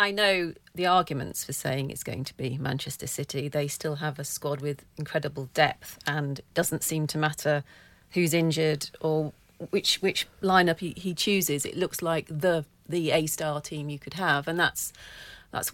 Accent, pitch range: British, 145-180 Hz